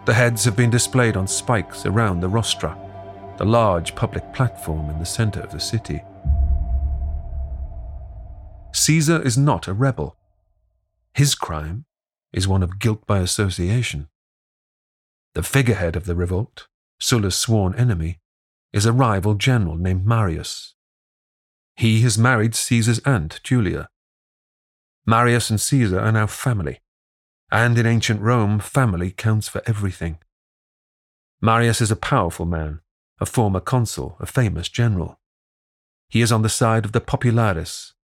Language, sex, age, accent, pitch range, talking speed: English, male, 40-59, British, 85-115 Hz, 135 wpm